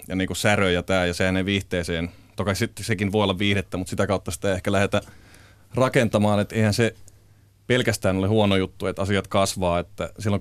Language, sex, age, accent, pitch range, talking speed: Finnish, male, 30-49, native, 95-105 Hz, 200 wpm